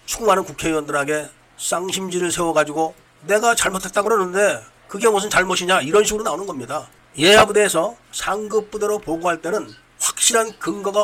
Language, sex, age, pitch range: Korean, male, 40-59, 155-205 Hz